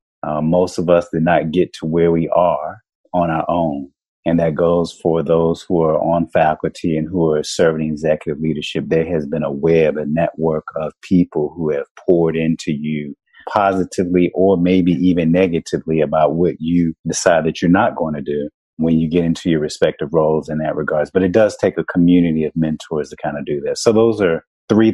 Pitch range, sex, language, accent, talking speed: 80-90 Hz, male, English, American, 205 wpm